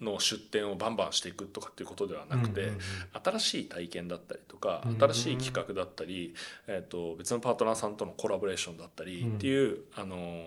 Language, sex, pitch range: Japanese, male, 95-130 Hz